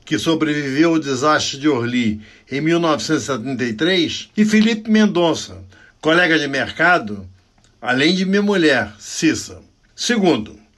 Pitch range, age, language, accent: 125-180 Hz, 60-79, Portuguese, Brazilian